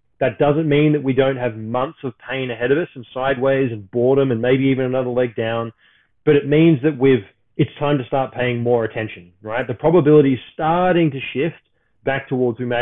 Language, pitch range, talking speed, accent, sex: English, 120-150 Hz, 215 wpm, Australian, male